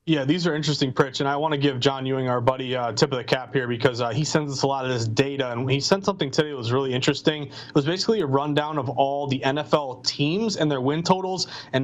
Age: 30-49